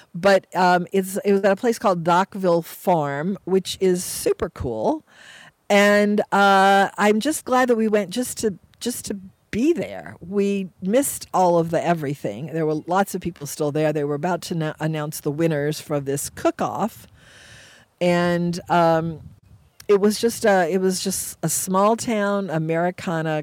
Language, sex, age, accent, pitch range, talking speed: English, female, 50-69, American, 155-200 Hz, 165 wpm